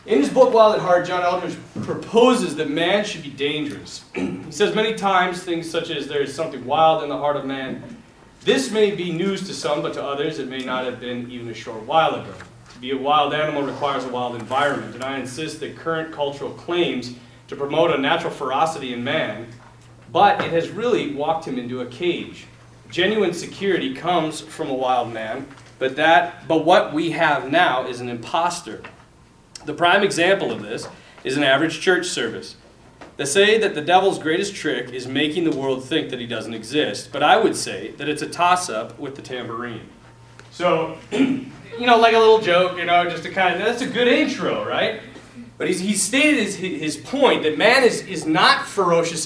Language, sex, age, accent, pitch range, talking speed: English, male, 40-59, American, 130-180 Hz, 200 wpm